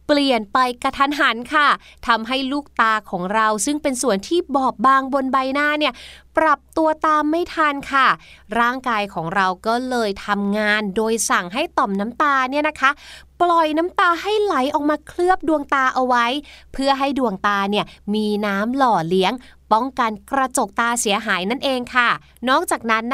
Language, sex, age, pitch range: Thai, female, 20-39, 235-315 Hz